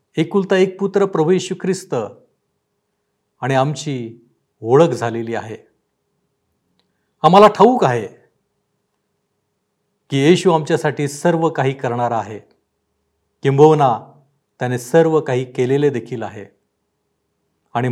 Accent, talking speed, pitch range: native, 95 wpm, 125-175 Hz